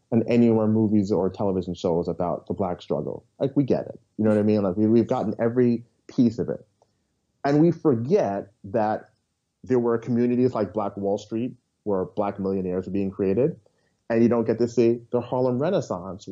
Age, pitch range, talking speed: 30-49, 105-130 Hz, 195 wpm